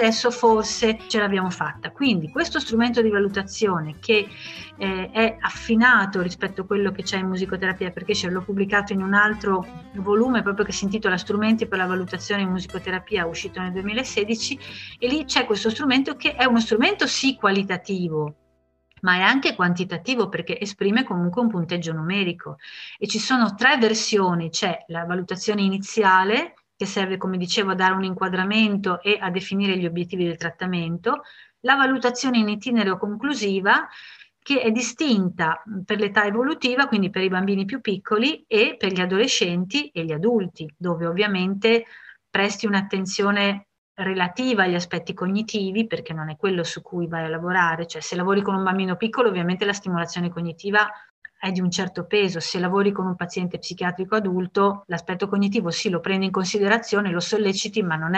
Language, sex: Italian, female